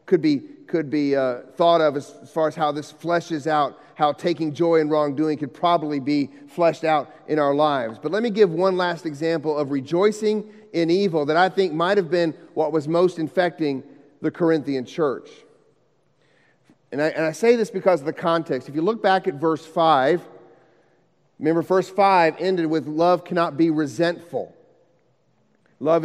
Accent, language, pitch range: American, English, 165-225 Hz